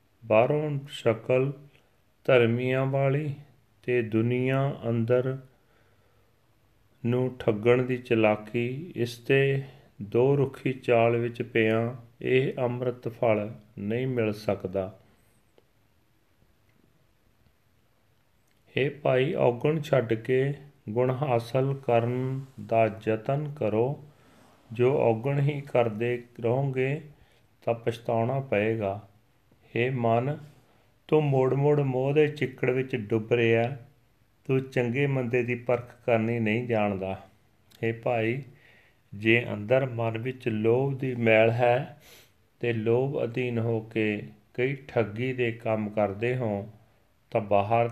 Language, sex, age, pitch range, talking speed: Punjabi, male, 40-59, 110-130 Hz, 105 wpm